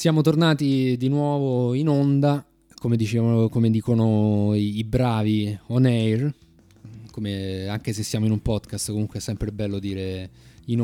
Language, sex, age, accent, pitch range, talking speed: Italian, male, 20-39, native, 105-125 Hz, 150 wpm